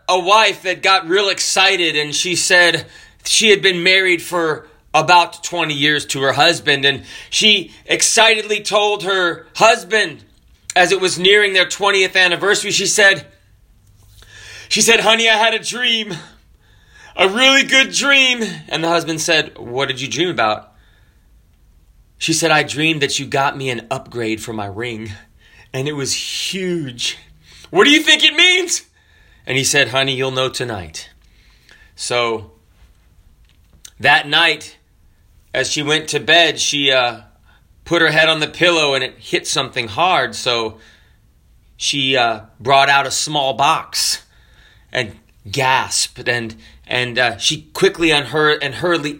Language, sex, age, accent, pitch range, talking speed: English, male, 30-49, American, 115-185 Hz, 150 wpm